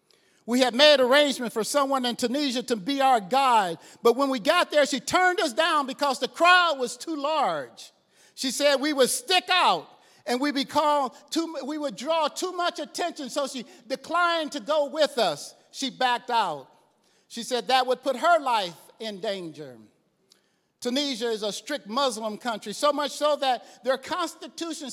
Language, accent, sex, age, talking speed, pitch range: English, American, male, 50-69, 180 wpm, 235-290 Hz